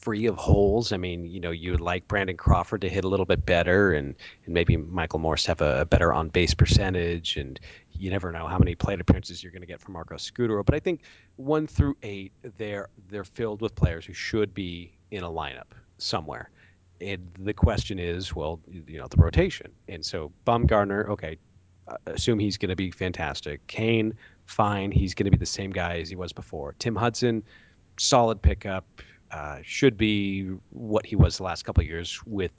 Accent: American